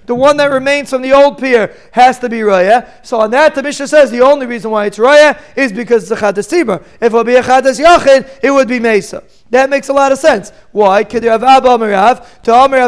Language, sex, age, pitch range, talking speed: English, male, 40-59, 230-270 Hz, 220 wpm